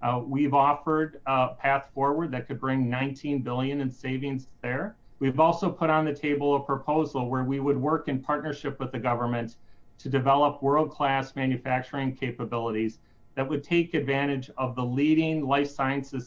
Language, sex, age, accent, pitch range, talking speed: English, male, 40-59, American, 125-145 Hz, 160 wpm